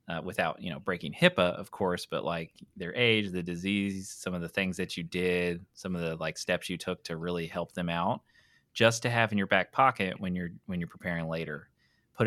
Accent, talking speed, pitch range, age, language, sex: American, 230 wpm, 90-120 Hz, 20-39, English, male